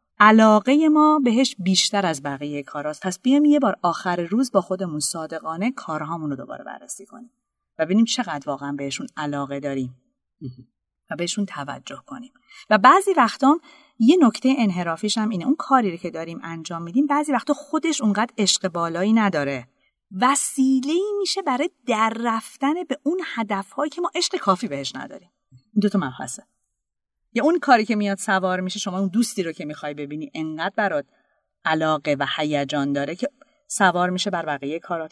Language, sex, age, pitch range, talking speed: Persian, female, 30-49, 160-260 Hz, 160 wpm